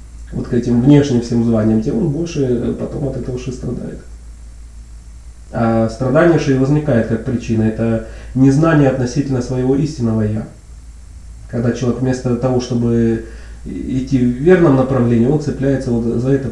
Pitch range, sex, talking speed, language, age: 115-135 Hz, male, 145 wpm, Russian, 30-49